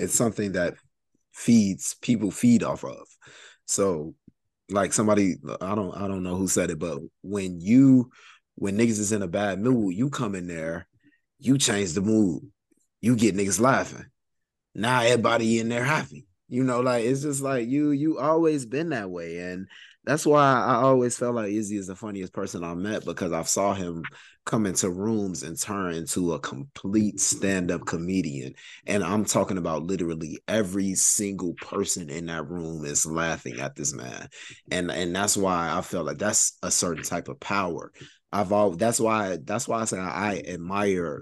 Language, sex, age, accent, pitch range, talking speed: English, male, 20-39, American, 90-110 Hz, 185 wpm